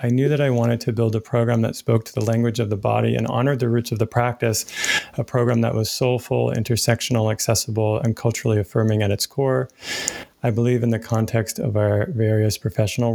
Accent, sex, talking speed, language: American, male, 205 wpm, English